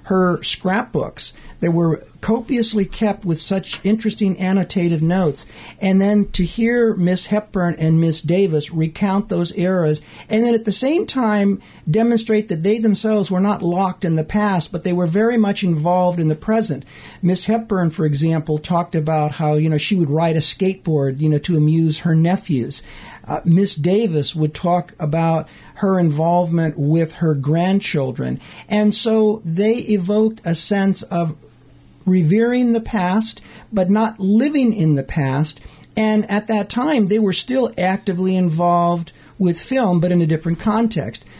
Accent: American